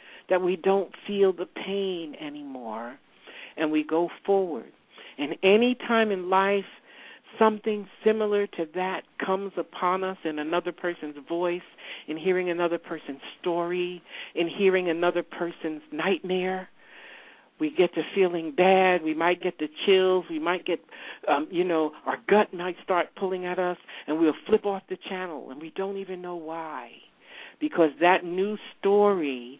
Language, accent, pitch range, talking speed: English, American, 170-200 Hz, 155 wpm